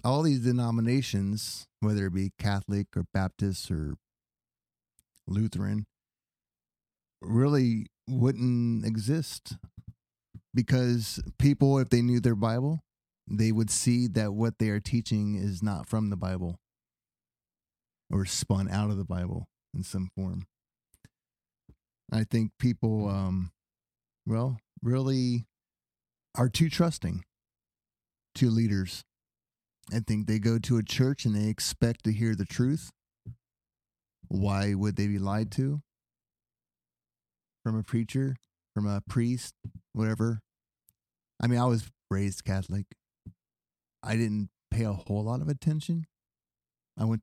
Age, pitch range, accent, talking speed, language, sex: 30-49, 95-120 Hz, American, 125 wpm, English, male